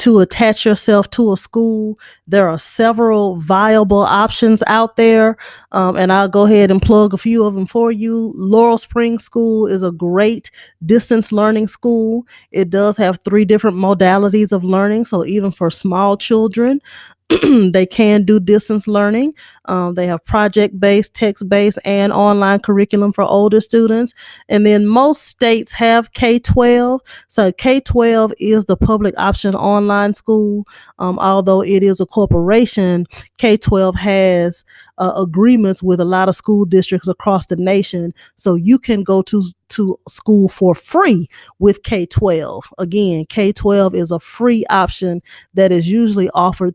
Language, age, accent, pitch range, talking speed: English, 20-39, American, 185-220 Hz, 155 wpm